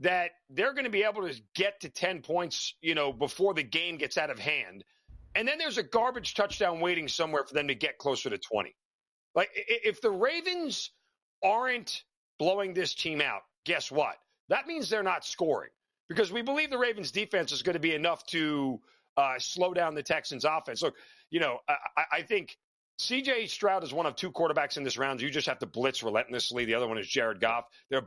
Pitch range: 155-220 Hz